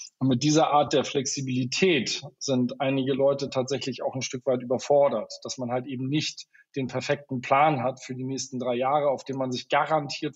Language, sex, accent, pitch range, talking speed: German, male, German, 130-145 Hz, 195 wpm